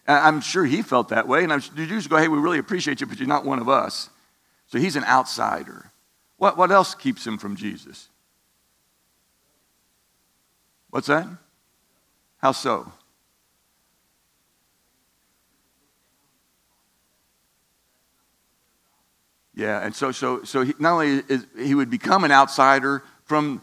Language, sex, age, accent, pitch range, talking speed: English, male, 60-79, American, 120-180 Hz, 135 wpm